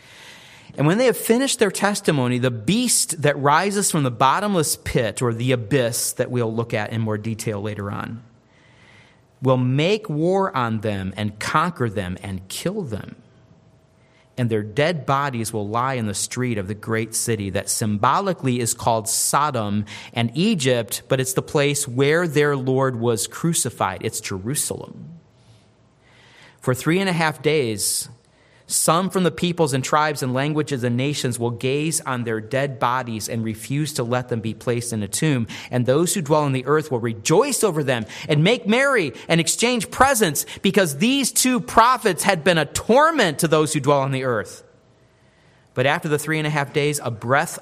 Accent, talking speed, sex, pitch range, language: American, 180 wpm, male, 115-155 Hz, English